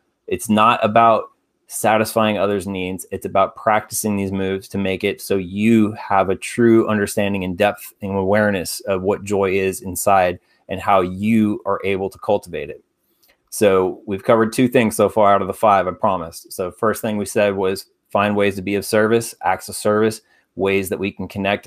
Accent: American